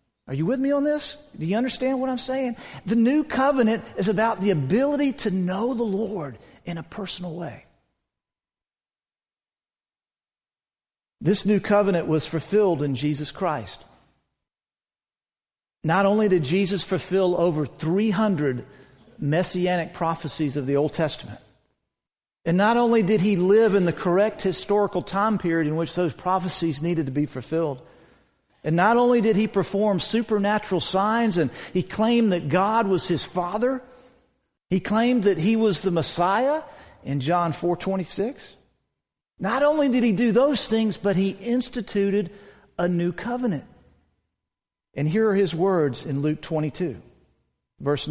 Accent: American